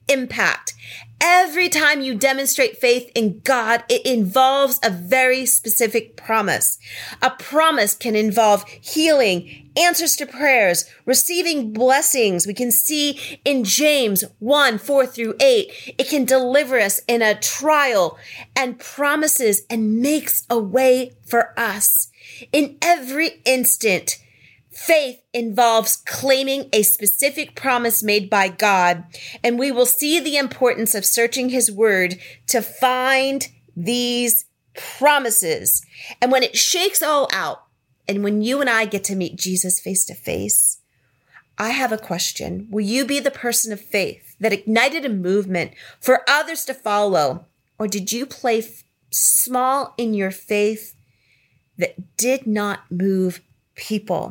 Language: English